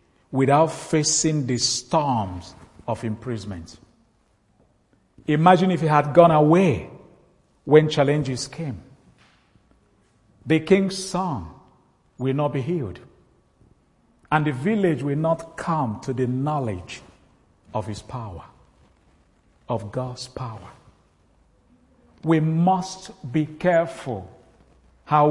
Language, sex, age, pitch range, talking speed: English, male, 50-69, 125-175 Hz, 100 wpm